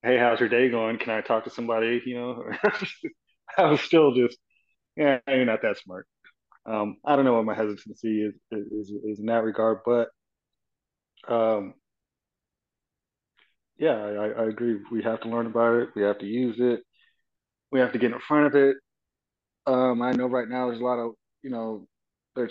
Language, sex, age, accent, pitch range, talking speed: English, male, 20-39, American, 105-125 Hz, 190 wpm